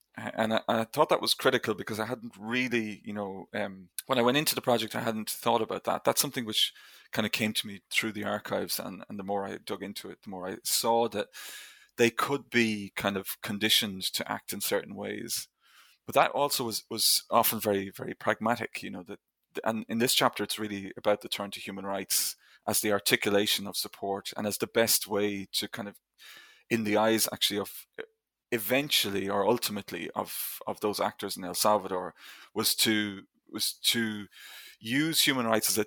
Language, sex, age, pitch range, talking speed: English, male, 30-49, 100-115 Hz, 205 wpm